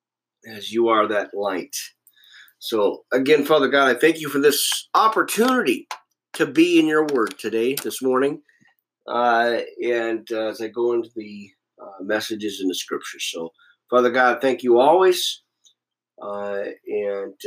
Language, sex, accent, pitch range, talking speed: English, male, American, 115-155 Hz, 150 wpm